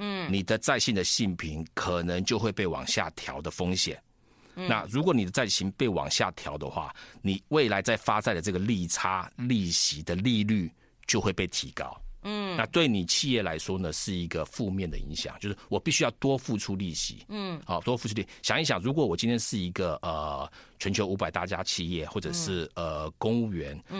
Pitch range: 85-120 Hz